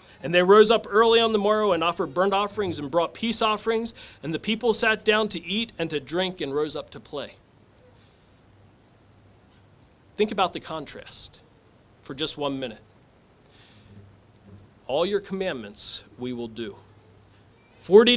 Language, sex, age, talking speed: English, male, 40-59, 150 wpm